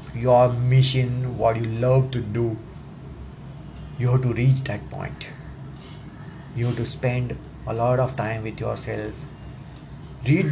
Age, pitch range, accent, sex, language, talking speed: 30-49, 120-140 Hz, native, male, Hindi, 135 wpm